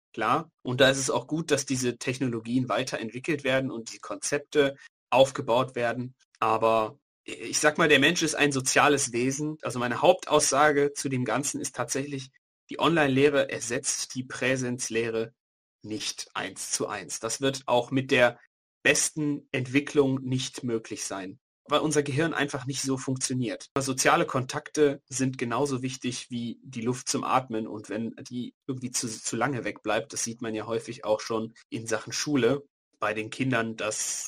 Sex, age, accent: male, 30-49, German